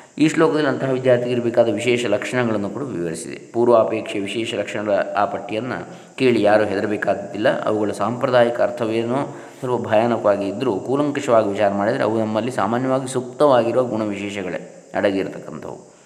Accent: native